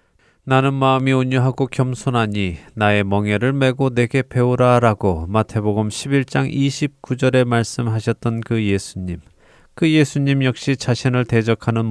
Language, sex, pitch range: Korean, male, 105-130 Hz